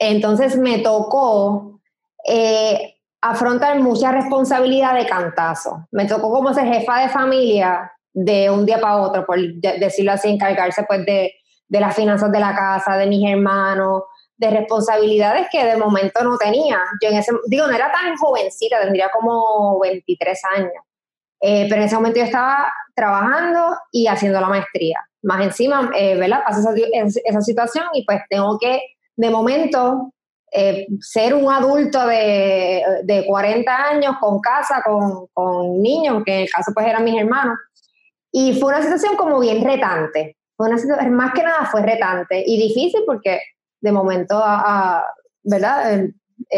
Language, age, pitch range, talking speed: Spanish, 20-39, 200-255 Hz, 160 wpm